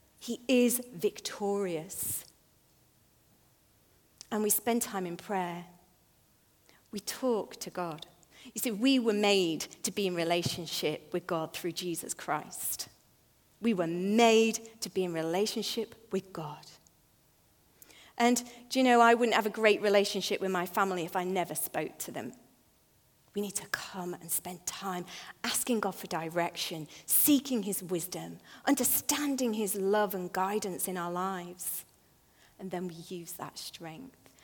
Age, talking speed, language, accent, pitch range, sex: 40-59, 145 wpm, English, British, 180-230 Hz, female